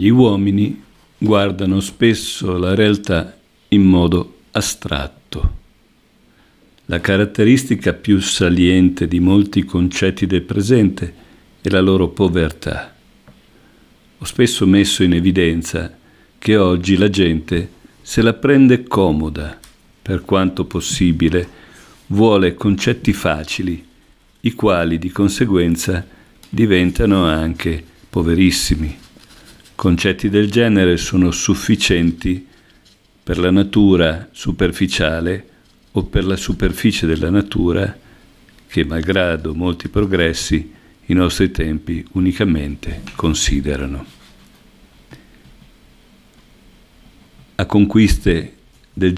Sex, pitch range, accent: male, 85-100 Hz, native